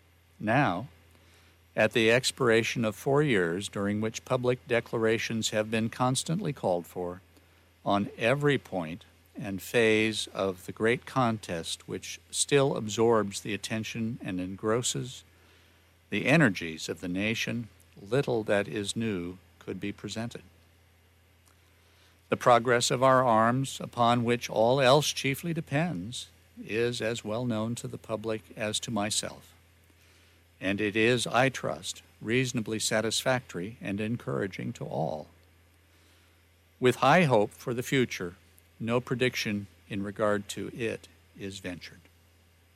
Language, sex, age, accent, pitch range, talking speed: English, male, 60-79, American, 85-120 Hz, 125 wpm